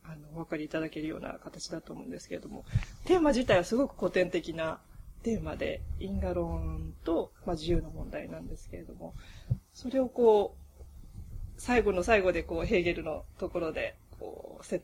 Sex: female